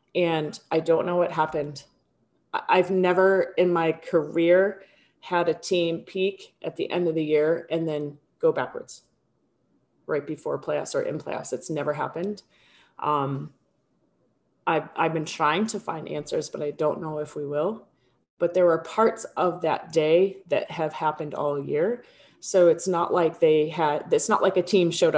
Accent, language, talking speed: American, English, 175 wpm